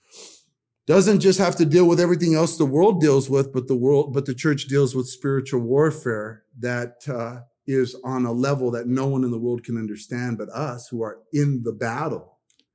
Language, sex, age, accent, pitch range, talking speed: English, male, 40-59, American, 125-190 Hz, 200 wpm